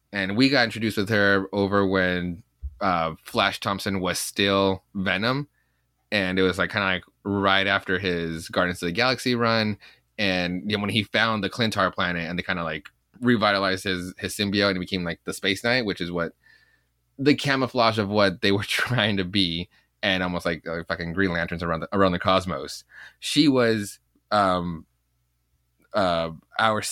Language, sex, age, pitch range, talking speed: English, male, 20-39, 90-110 Hz, 185 wpm